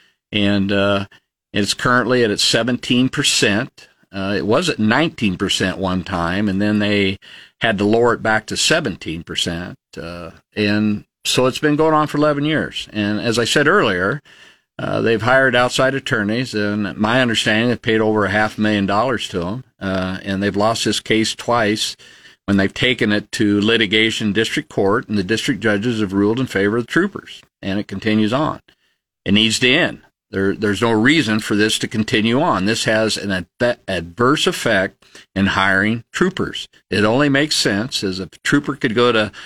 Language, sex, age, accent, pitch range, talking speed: English, male, 50-69, American, 100-125 Hz, 175 wpm